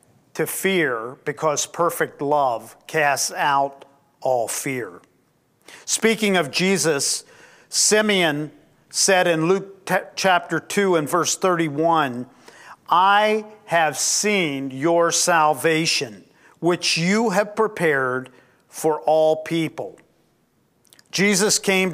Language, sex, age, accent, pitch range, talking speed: English, male, 50-69, American, 150-190 Hz, 95 wpm